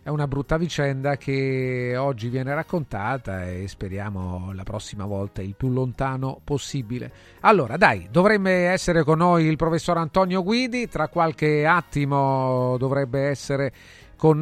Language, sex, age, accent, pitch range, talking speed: Italian, male, 40-59, native, 125-145 Hz, 135 wpm